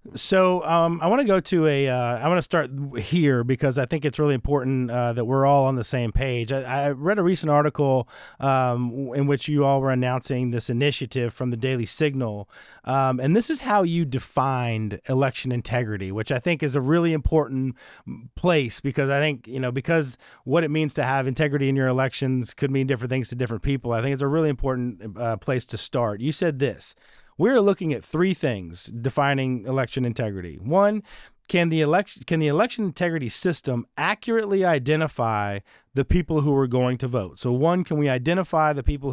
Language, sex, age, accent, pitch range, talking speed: English, male, 30-49, American, 125-155 Hz, 200 wpm